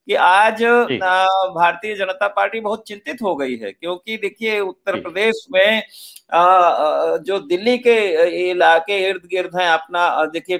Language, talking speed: Hindi, 135 wpm